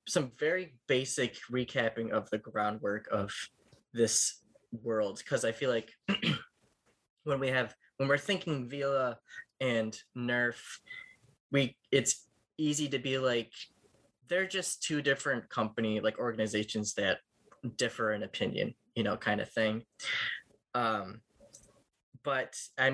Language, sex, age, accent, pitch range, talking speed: English, male, 10-29, American, 115-140 Hz, 125 wpm